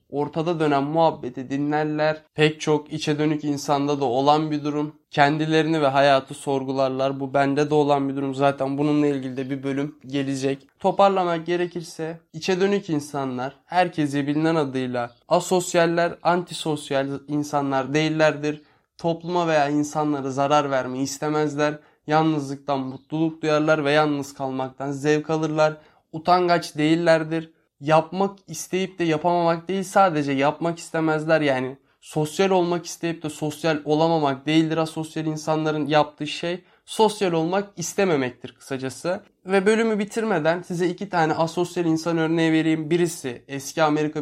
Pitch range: 145-170 Hz